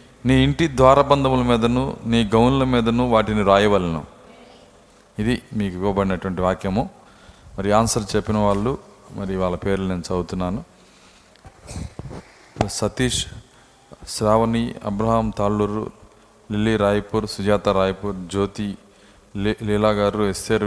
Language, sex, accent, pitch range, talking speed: Telugu, male, native, 105-115 Hz, 105 wpm